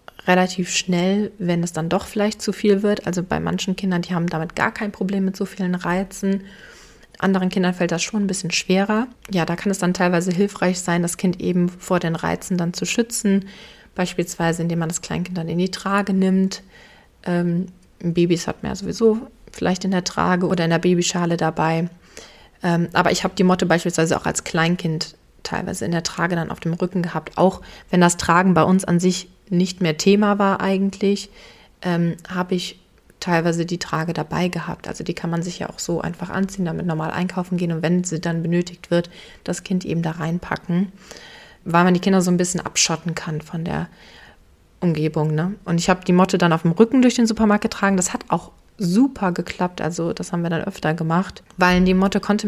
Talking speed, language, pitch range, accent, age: 205 wpm, German, 170-195 Hz, German, 30-49